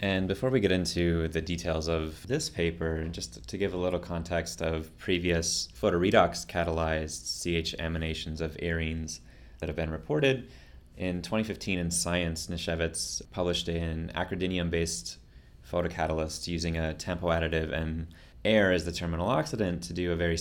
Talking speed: 155 wpm